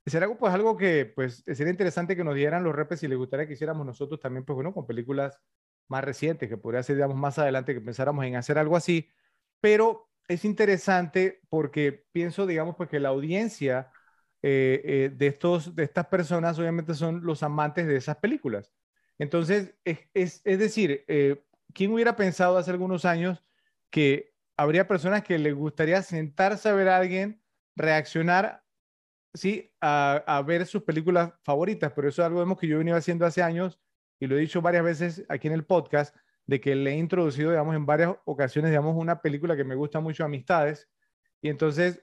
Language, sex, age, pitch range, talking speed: Spanish, male, 30-49, 145-180 Hz, 180 wpm